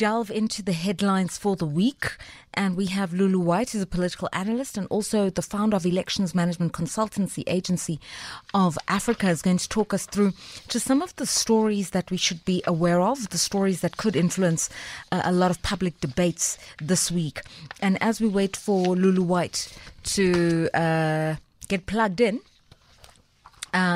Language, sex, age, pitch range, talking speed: English, female, 30-49, 160-195 Hz, 175 wpm